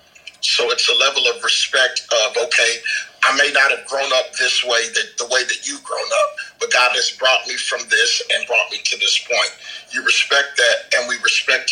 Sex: male